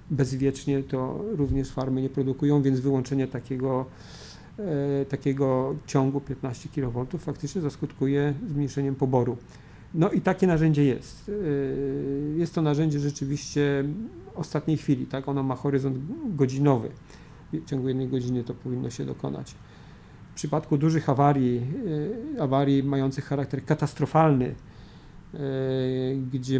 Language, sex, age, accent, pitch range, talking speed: Polish, male, 40-59, native, 130-150 Hz, 115 wpm